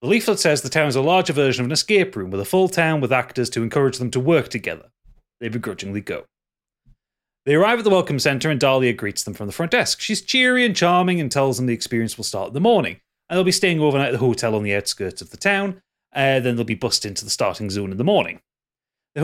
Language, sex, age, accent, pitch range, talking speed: English, male, 30-49, British, 115-175 Hz, 260 wpm